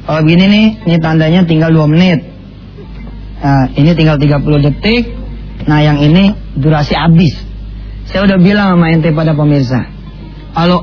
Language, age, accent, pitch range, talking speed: English, 20-39, Indonesian, 145-175 Hz, 145 wpm